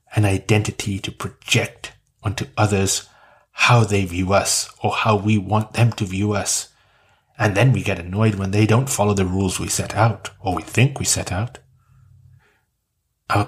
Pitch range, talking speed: 100-120 Hz, 175 wpm